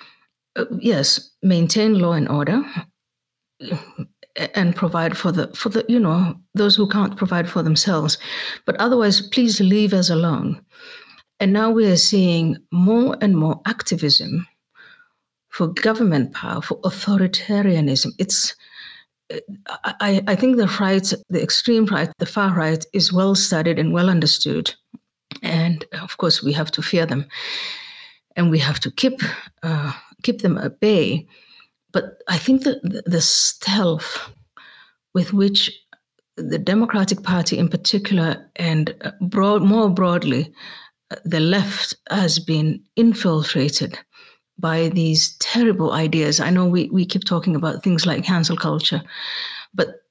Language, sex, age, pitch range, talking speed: English, female, 60-79, 165-205 Hz, 135 wpm